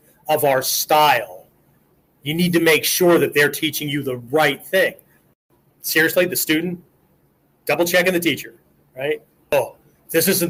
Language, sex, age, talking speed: English, male, 30-49, 150 wpm